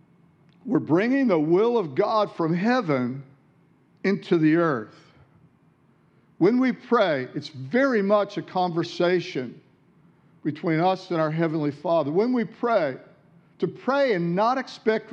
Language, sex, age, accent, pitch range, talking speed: English, male, 50-69, American, 150-185 Hz, 130 wpm